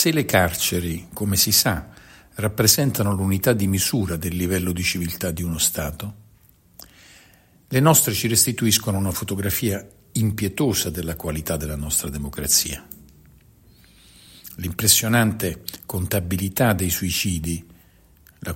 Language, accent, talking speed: Italian, native, 110 wpm